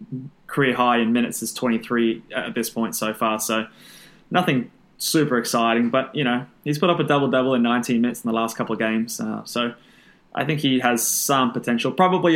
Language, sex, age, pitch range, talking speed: English, male, 20-39, 120-155 Hz, 205 wpm